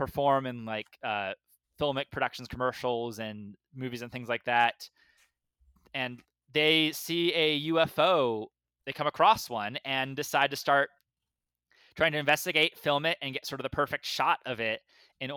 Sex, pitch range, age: male, 120-155 Hz, 20-39